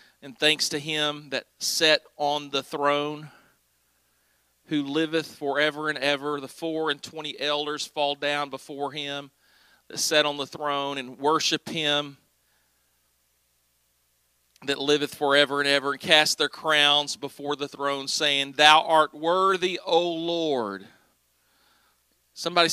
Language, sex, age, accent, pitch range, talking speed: English, male, 40-59, American, 135-165 Hz, 130 wpm